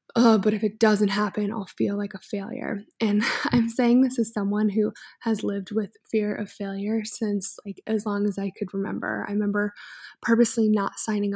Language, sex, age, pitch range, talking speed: English, female, 20-39, 205-235 Hz, 195 wpm